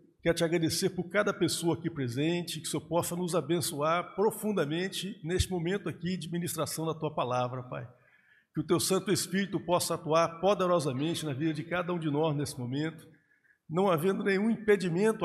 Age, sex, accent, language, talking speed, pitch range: 50-69, male, Brazilian, Portuguese, 175 wpm, 150-180 Hz